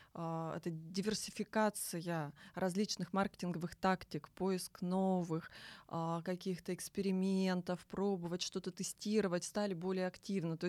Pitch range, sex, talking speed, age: 175-210 Hz, female, 90 wpm, 20-39